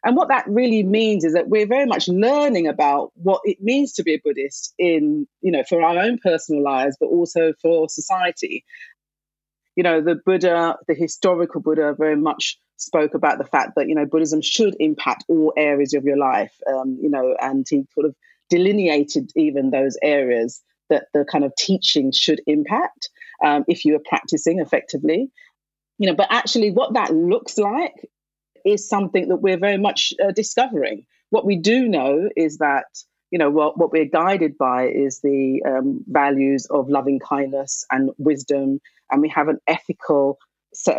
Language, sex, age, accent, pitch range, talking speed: English, female, 40-59, British, 145-205 Hz, 180 wpm